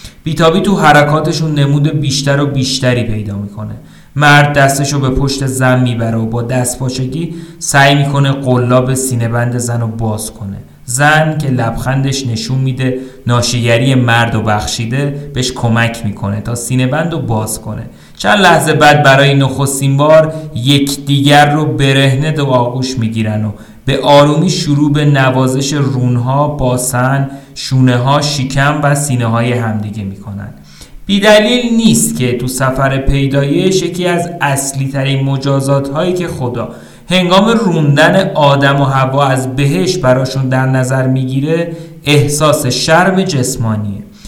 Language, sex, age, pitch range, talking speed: Persian, male, 30-49, 125-150 Hz, 140 wpm